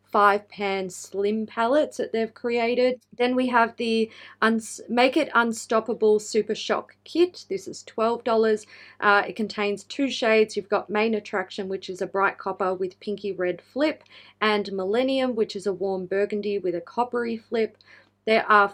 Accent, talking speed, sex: Australian, 170 wpm, female